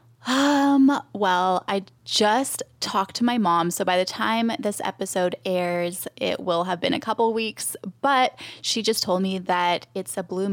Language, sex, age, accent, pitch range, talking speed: English, female, 10-29, American, 180-220 Hz, 175 wpm